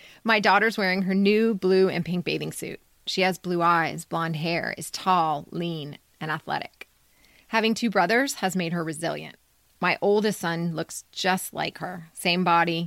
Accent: American